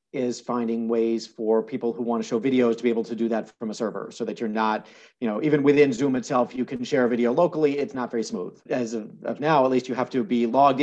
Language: English